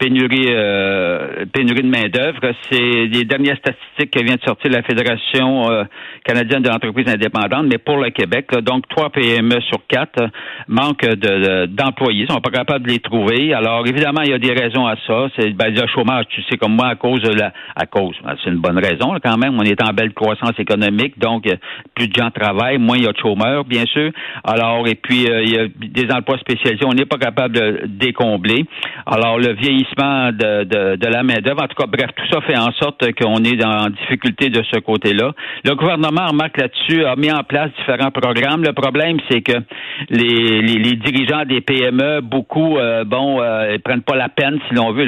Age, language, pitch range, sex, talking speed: 60-79, French, 115-135 Hz, male, 225 wpm